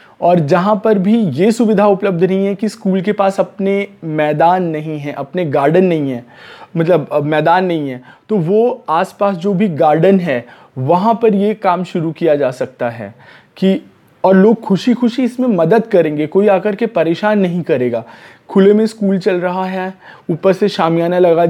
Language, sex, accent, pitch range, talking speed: Hindi, male, native, 165-200 Hz, 180 wpm